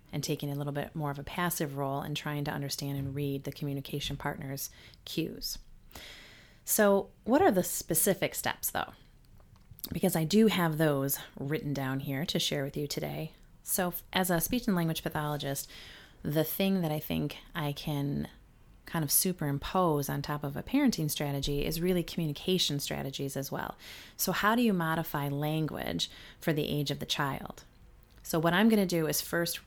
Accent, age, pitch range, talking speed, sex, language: American, 30-49, 145-175 Hz, 180 wpm, female, English